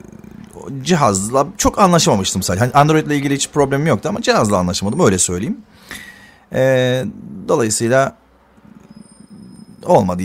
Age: 40-59